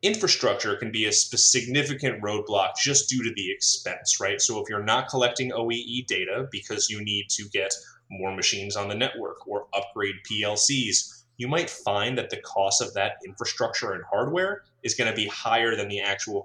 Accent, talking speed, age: American, 185 wpm, 20-39